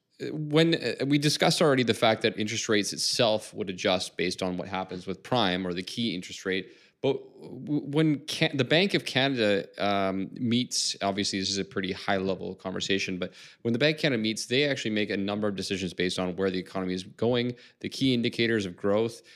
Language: English